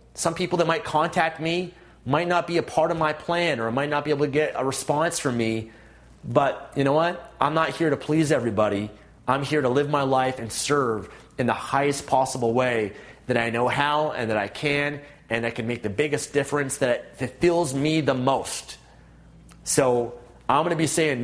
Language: English